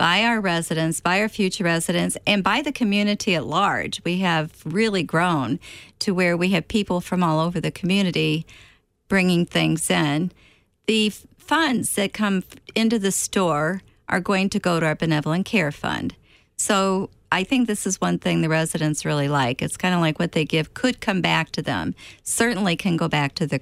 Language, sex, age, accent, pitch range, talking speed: English, female, 50-69, American, 155-190 Hz, 190 wpm